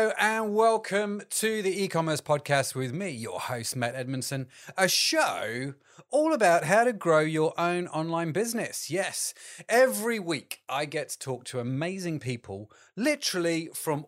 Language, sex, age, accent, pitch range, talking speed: English, male, 30-49, British, 125-175 Hz, 150 wpm